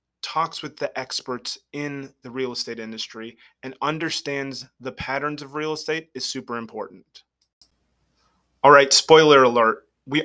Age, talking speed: 30-49, 140 wpm